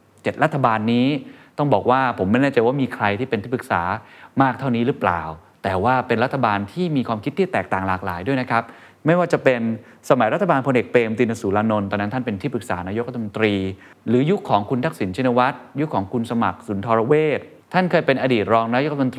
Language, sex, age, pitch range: Thai, male, 20-39, 105-130 Hz